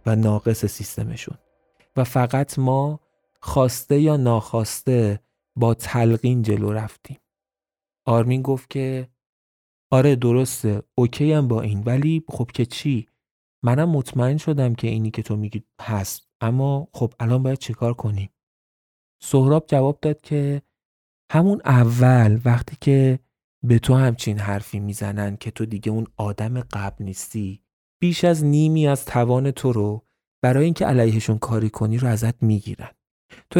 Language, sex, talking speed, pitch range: Persian, male, 135 wpm, 110-135 Hz